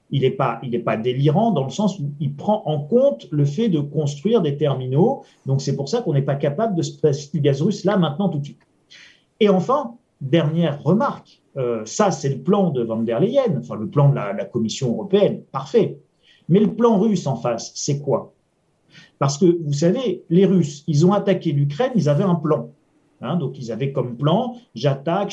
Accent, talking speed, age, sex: French, 210 wpm, 40-59, male